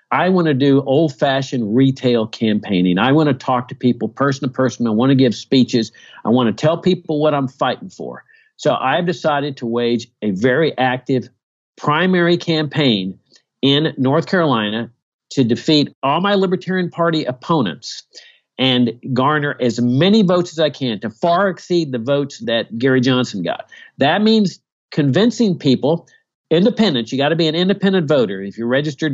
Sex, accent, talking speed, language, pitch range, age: male, American, 170 wpm, English, 125-165 Hz, 50-69